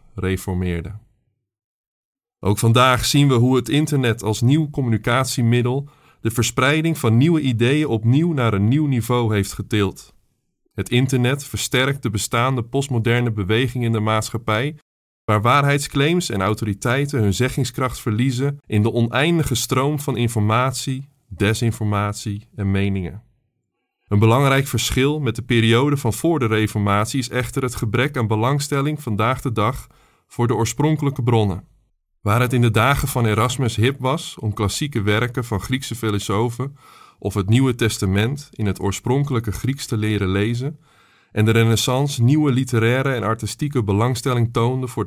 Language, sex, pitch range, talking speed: Dutch, male, 110-135 Hz, 145 wpm